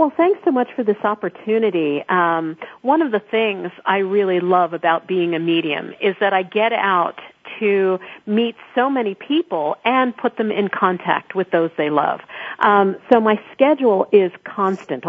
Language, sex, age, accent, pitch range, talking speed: English, female, 50-69, American, 185-230 Hz, 175 wpm